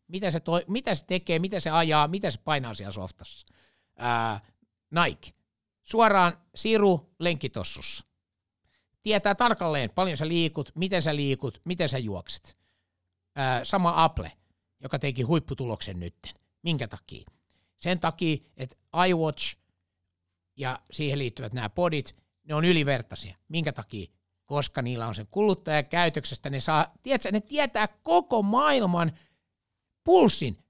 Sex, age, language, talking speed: male, 60-79, Finnish, 130 wpm